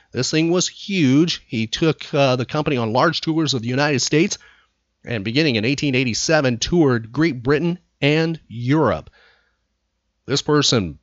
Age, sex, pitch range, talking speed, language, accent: 40-59, male, 120-165 Hz, 145 wpm, English, American